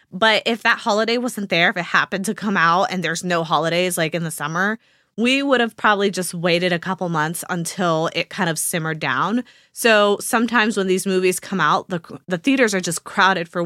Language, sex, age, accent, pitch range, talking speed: English, female, 20-39, American, 175-225 Hz, 215 wpm